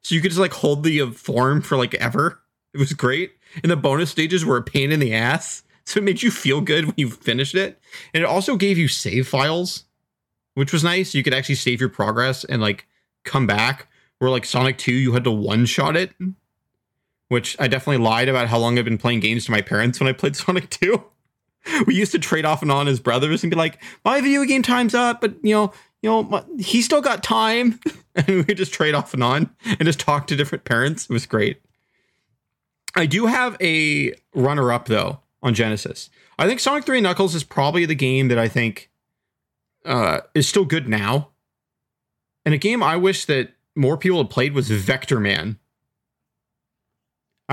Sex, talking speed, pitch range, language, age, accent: male, 210 wpm, 125-185 Hz, English, 30-49, American